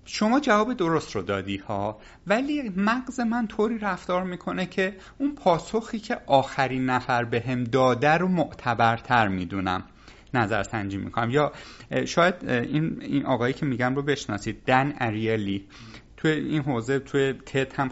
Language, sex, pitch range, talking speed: Persian, male, 120-195 Hz, 145 wpm